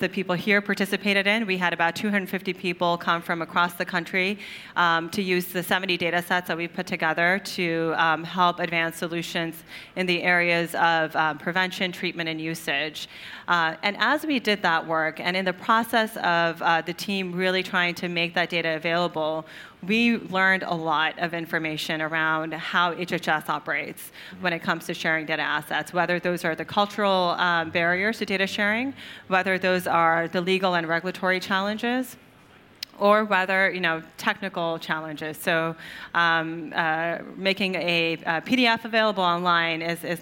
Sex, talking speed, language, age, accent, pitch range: female, 170 wpm, English, 30-49, American, 165-195 Hz